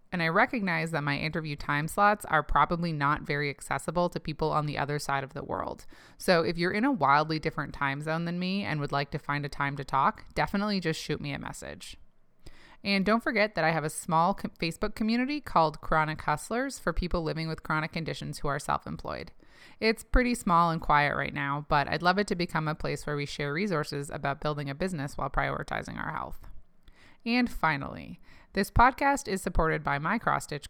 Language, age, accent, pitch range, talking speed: English, 20-39, American, 145-185 Hz, 205 wpm